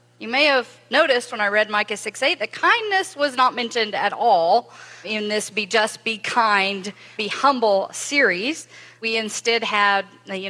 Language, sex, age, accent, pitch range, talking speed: English, female, 40-59, American, 195-275 Hz, 160 wpm